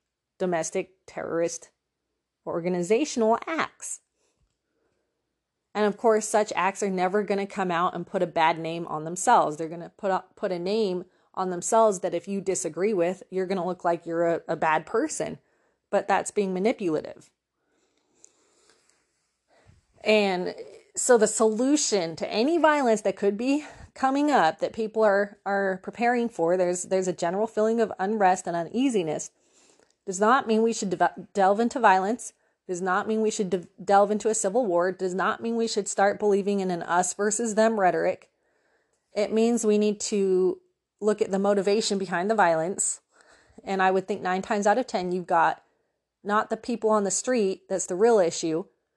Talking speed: 175 wpm